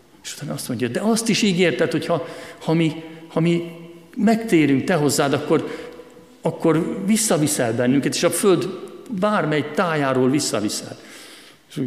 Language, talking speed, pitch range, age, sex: Hungarian, 135 wpm, 110-165 Hz, 50-69, male